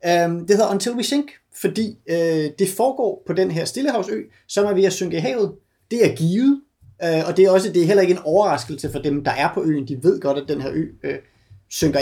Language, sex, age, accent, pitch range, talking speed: Danish, male, 30-49, native, 145-200 Hz, 250 wpm